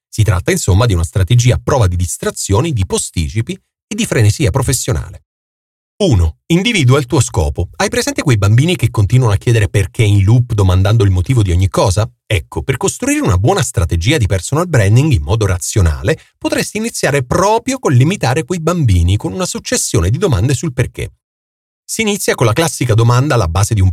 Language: Italian